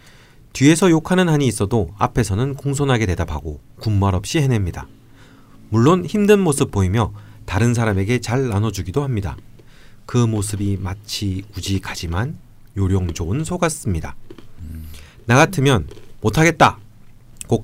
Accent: native